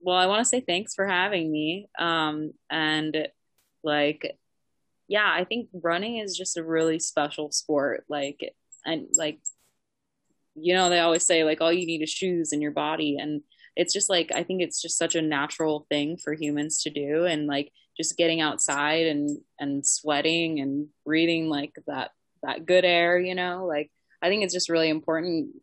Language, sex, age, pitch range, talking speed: English, female, 20-39, 150-180 Hz, 185 wpm